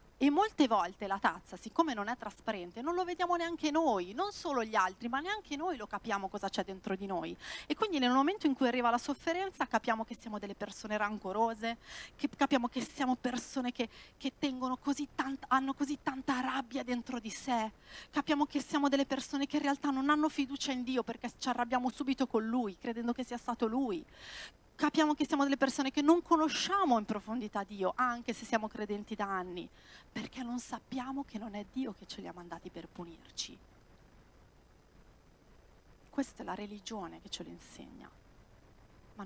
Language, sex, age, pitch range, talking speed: Italian, female, 40-59, 210-280 Hz, 190 wpm